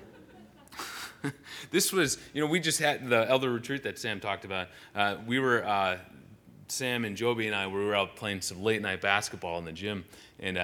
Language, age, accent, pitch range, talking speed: English, 30-49, American, 110-175 Hz, 195 wpm